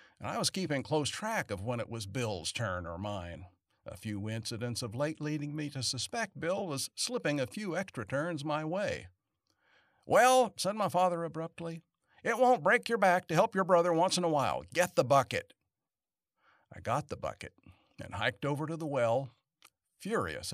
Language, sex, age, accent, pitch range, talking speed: English, male, 50-69, American, 115-180 Hz, 185 wpm